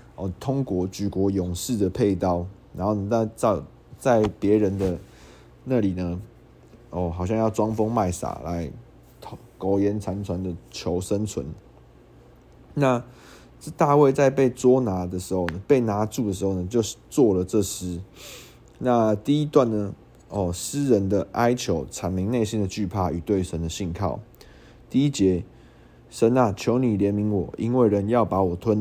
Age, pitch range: 20-39, 95-120 Hz